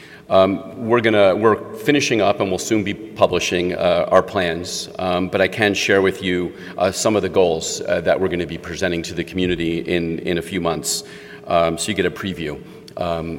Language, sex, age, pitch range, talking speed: English, male, 40-59, 90-105 Hz, 210 wpm